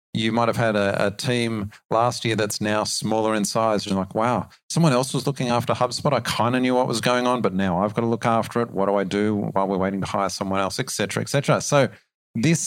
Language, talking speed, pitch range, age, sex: English, 265 wpm, 100-130 Hz, 40-59, male